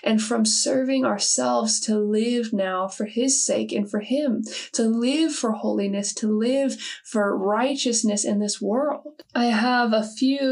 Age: 20-39